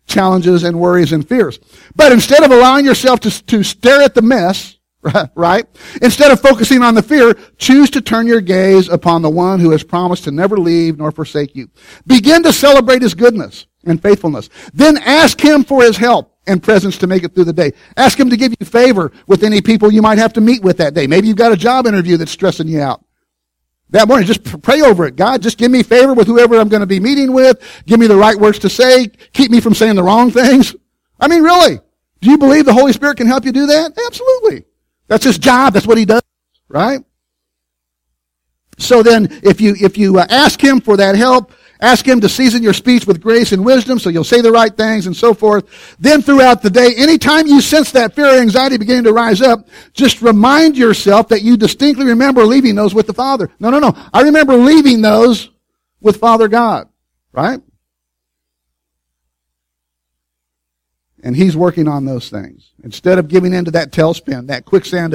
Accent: American